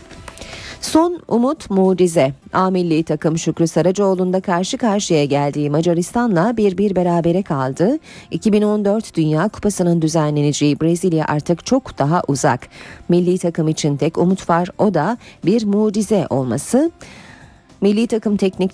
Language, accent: Turkish, native